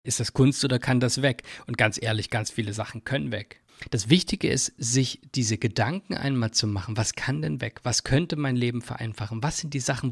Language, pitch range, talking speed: German, 120-150 Hz, 220 wpm